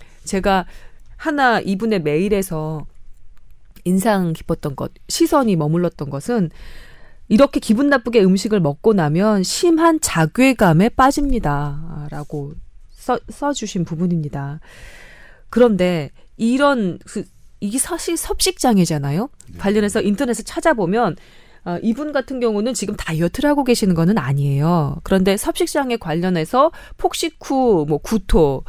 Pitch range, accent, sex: 165-250 Hz, native, female